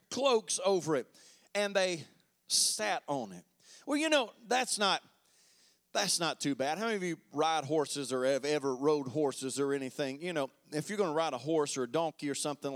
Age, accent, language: 30-49, American, English